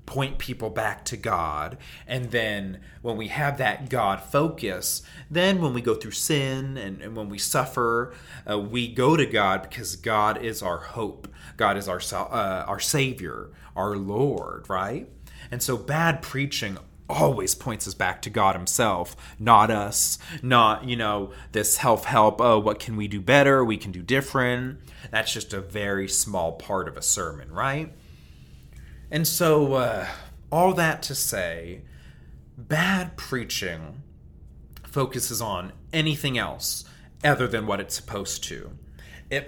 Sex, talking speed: male, 155 wpm